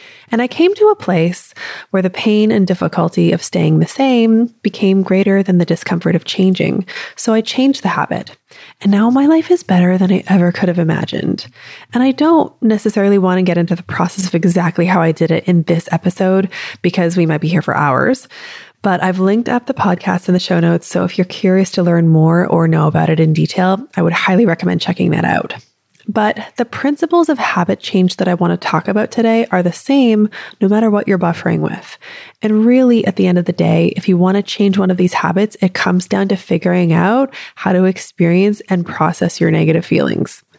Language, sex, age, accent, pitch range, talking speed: English, female, 20-39, American, 175-225 Hz, 220 wpm